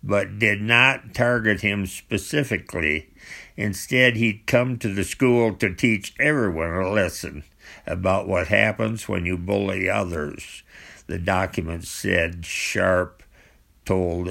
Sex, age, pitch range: male, 60-79, 90-120 Hz